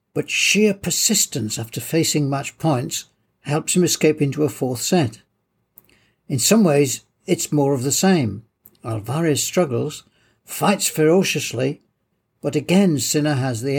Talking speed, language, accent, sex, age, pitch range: 135 wpm, English, British, male, 60-79, 125-180 Hz